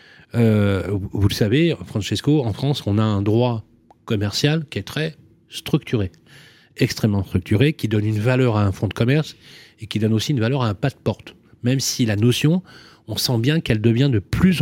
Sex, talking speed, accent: male, 200 wpm, French